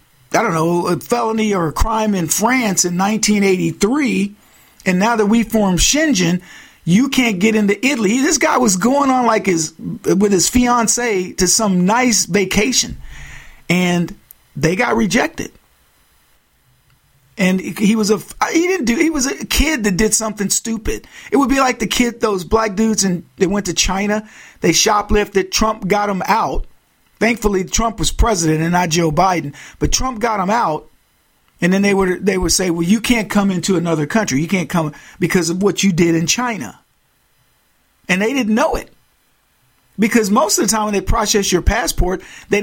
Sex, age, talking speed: male, 40-59, 180 wpm